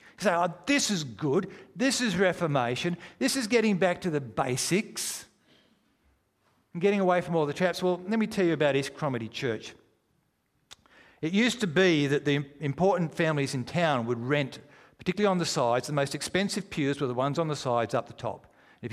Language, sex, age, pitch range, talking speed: English, male, 50-69, 135-190 Hz, 195 wpm